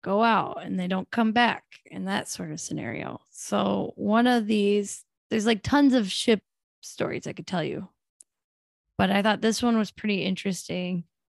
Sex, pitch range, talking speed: female, 185-220 Hz, 180 wpm